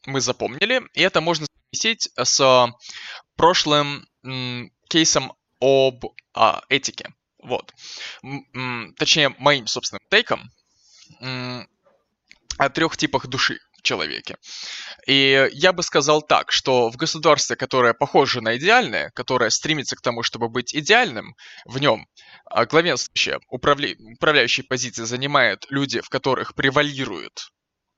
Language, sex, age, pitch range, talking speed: Russian, male, 20-39, 125-150 Hz, 110 wpm